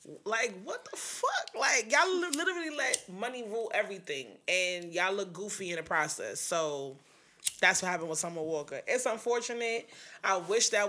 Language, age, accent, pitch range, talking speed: English, 20-39, American, 185-235 Hz, 165 wpm